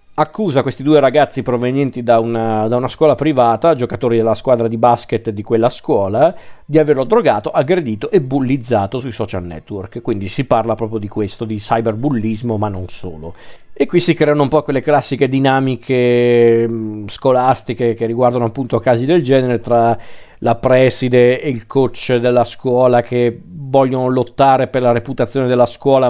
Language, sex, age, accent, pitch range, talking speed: Italian, male, 40-59, native, 115-140 Hz, 160 wpm